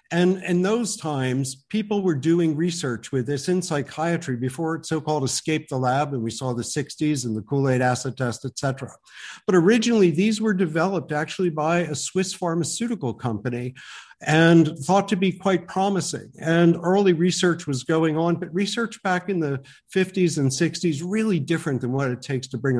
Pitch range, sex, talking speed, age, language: 135-180 Hz, male, 180 wpm, 50-69, English